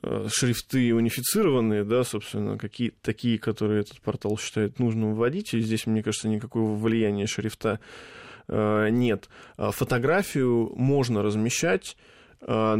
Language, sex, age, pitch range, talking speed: Russian, male, 20-39, 110-125 Hz, 110 wpm